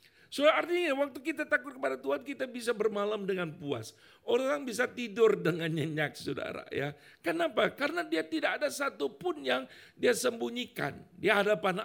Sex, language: male, Indonesian